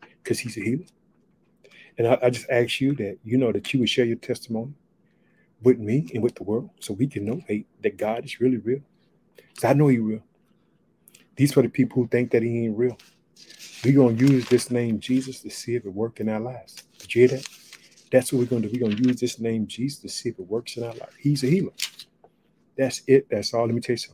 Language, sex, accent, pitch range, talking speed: English, male, American, 110-130 Hz, 250 wpm